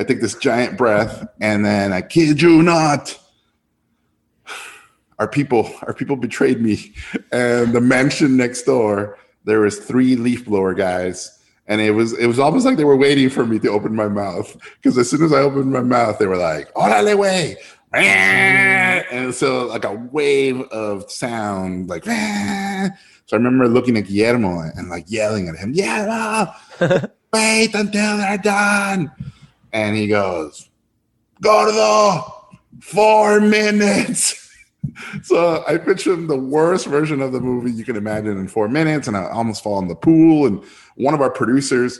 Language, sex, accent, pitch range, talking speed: English, male, American, 105-160 Hz, 165 wpm